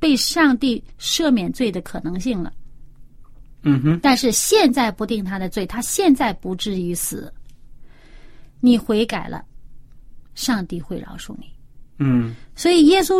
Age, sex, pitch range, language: 30-49, female, 170-270 Hz, Chinese